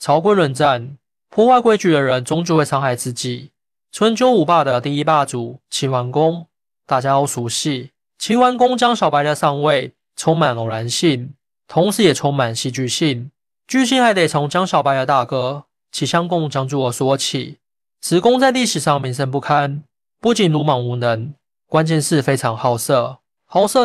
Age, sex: 20-39, male